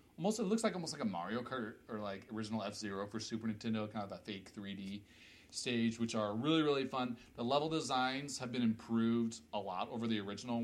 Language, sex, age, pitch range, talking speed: English, male, 30-49, 100-125 Hz, 215 wpm